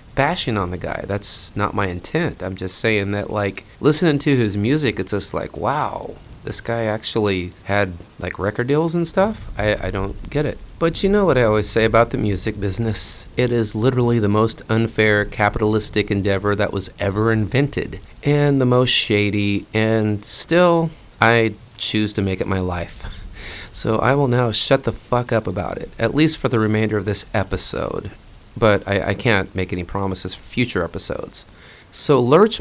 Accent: American